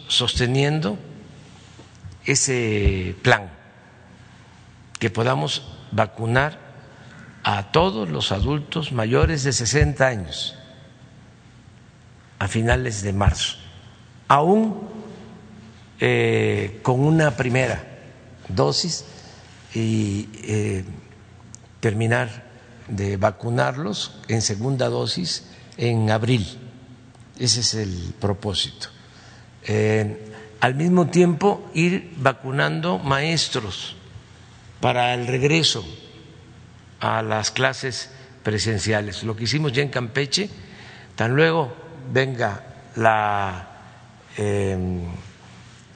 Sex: male